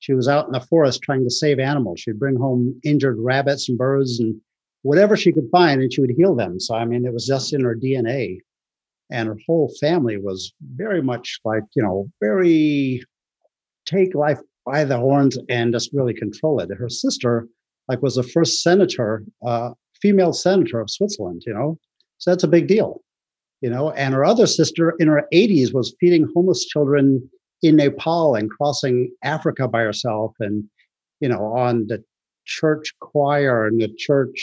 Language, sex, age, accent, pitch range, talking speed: English, male, 50-69, American, 120-155 Hz, 185 wpm